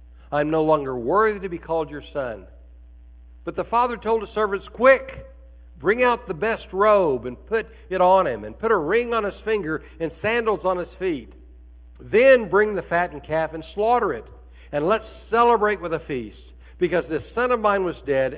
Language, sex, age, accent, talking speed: English, male, 60-79, American, 195 wpm